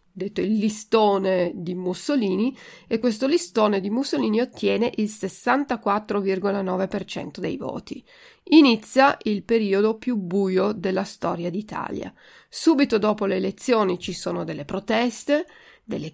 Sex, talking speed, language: female, 120 wpm, Italian